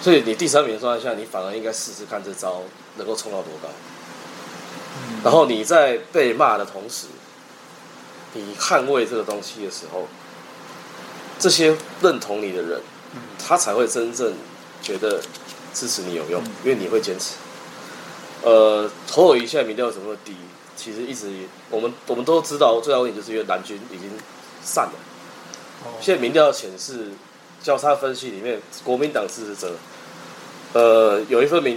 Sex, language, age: male, Japanese, 20-39